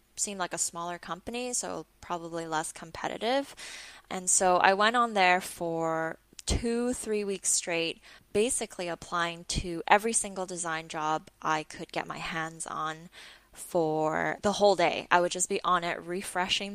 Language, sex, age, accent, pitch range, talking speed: English, female, 10-29, American, 165-215 Hz, 160 wpm